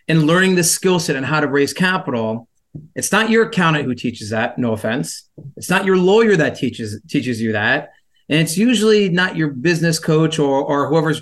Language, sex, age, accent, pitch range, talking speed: English, male, 30-49, American, 145-190 Hz, 205 wpm